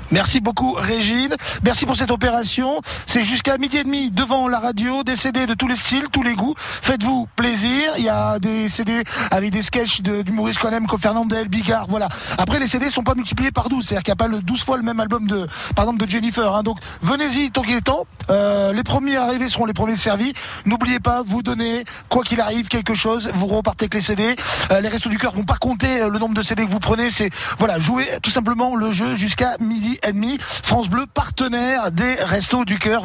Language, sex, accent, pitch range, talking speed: French, male, French, 215-255 Hz, 230 wpm